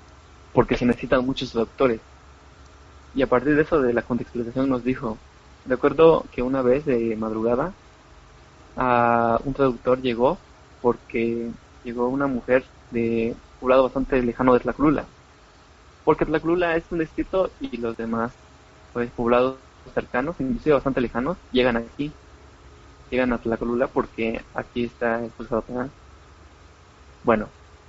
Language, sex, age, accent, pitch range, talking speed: Spanish, male, 20-39, Mexican, 90-130 Hz, 135 wpm